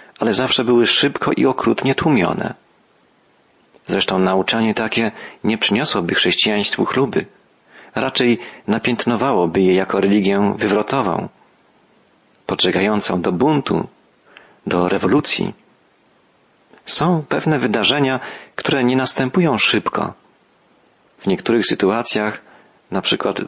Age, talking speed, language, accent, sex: 40-59, 95 wpm, Polish, native, male